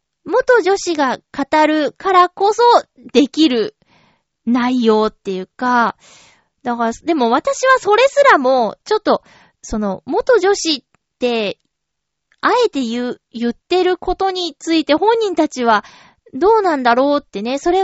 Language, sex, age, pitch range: Japanese, female, 20-39, 235-340 Hz